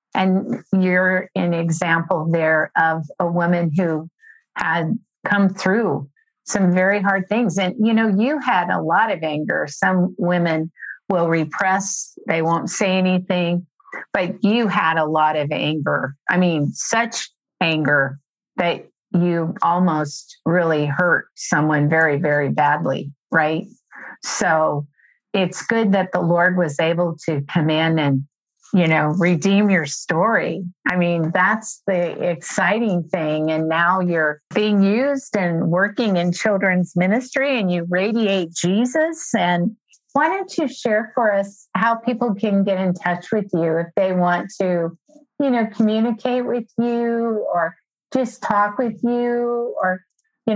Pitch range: 170-220 Hz